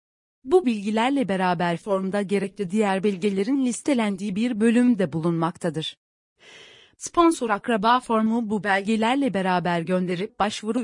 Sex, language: female, Turkish